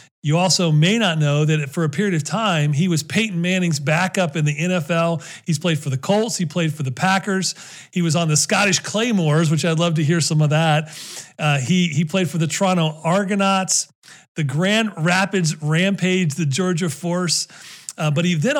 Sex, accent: male, American